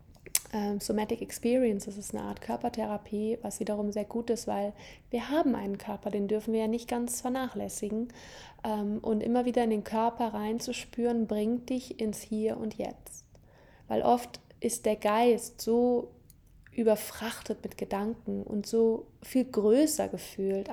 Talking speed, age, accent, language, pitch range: 155 wpm, 20-39, German, German, 205-235 Hz